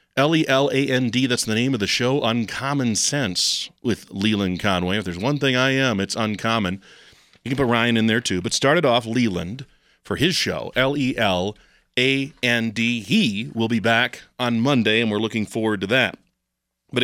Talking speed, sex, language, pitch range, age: 170 wpm, male, English, 110-140 Hz, 40-59